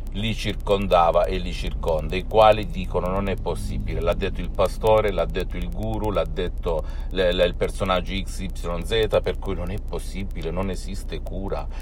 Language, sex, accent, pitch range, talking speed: Italian, male, native, 90-110 Hz, 175 wpm